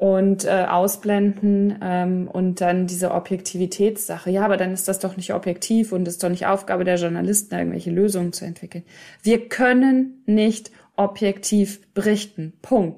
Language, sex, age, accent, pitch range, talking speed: German, female, 20-39, German, 195-230 Hz, 155 wpm